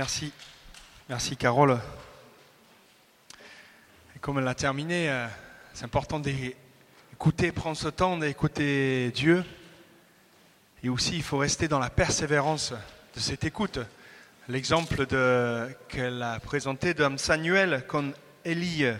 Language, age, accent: French, 30-49, French